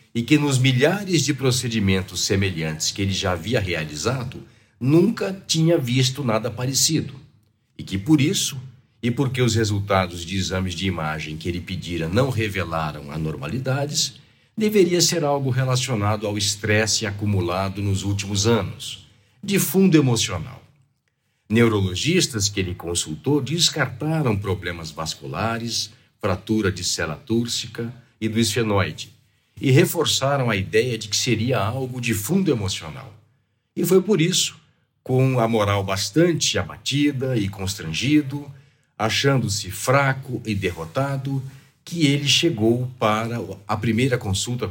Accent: Brazilian